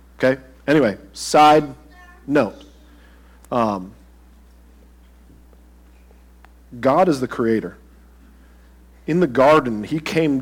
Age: 40-59